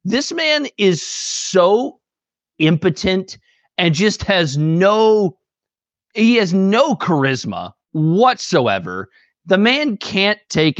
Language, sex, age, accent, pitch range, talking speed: English, male, 30-49, American, 150-205 Hz, 100 wpm